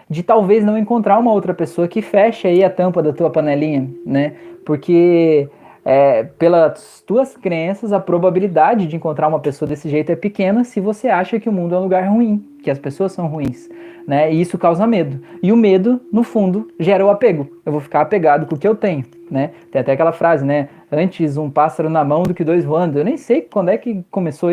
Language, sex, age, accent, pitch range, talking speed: Portuguese, male, 20-39, Brazilian, 155-210 Hz, 220 wpm